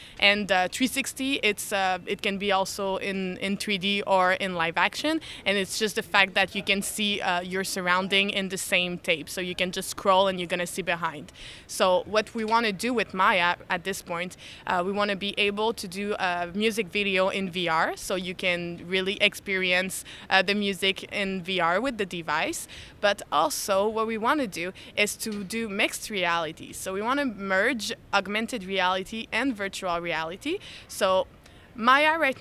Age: 20-39